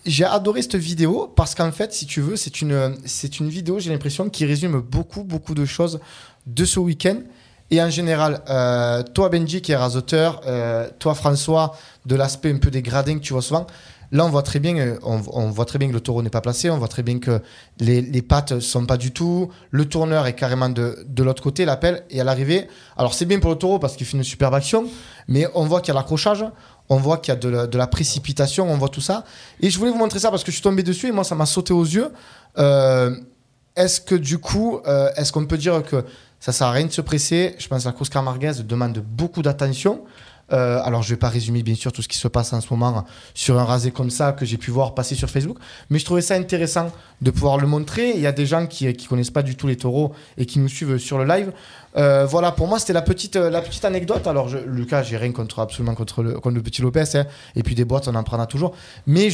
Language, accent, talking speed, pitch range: French, French, 265 wpm, 125-170 Hz